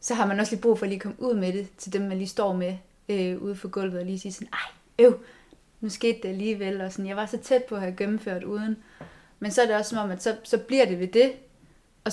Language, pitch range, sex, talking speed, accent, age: Danish, 185-210 Hz, female, 290 wpm, native, 20-39